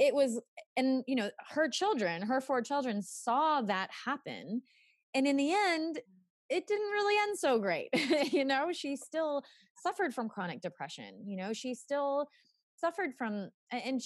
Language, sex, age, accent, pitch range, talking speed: English, female, 20-39, American, 185-275 Hz, 160 wpm